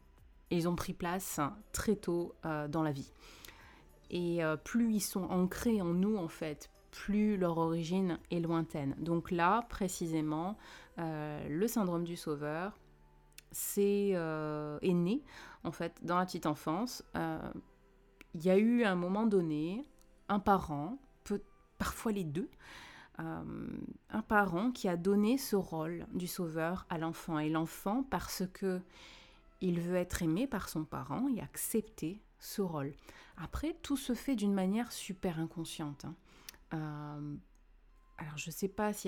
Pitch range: 160-200 Hz